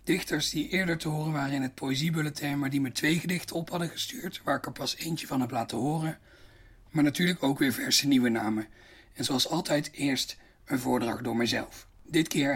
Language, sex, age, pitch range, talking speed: Dutch, male, 40-59, 115-160 Hz, 205 wpm